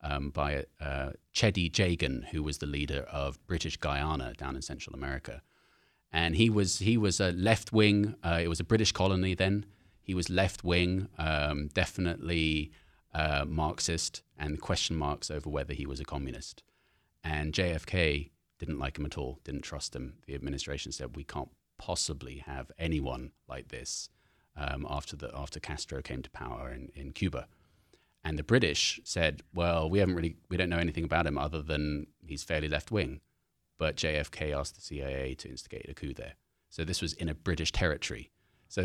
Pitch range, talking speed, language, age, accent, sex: 70-90 Hz, 175 wpm, English, 30-49, British, male